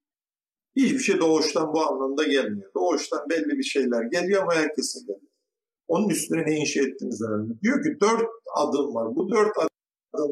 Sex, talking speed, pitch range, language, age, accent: male, 170 wpm, 145-230 Hz, Turkish, 50-69, native